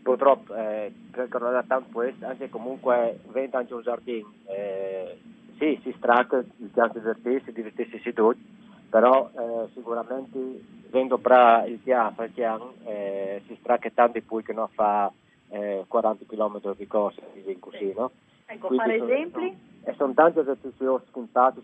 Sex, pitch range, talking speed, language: male, 105-120 Hz, 170 wpm, Italian